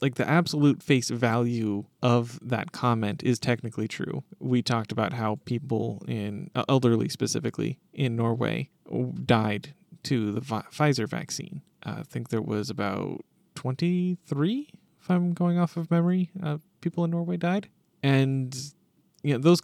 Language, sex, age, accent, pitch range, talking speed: English, male, 30-49, American, 110-155 Hz, 140 wpm